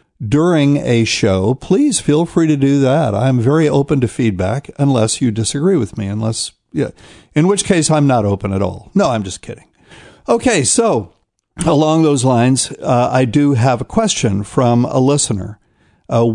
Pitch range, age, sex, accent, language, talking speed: 110-145 Hz, 50-69, male, American, English, 175 wpm